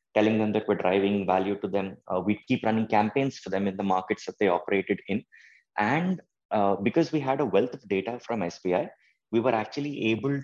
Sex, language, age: male, English, 20-39